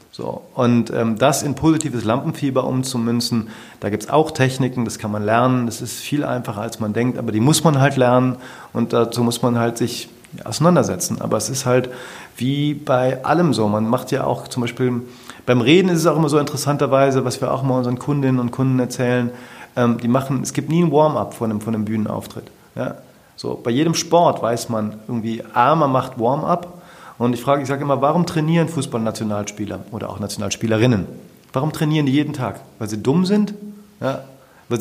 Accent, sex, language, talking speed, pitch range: German, male, German, 200 wpm, 115-150 Hz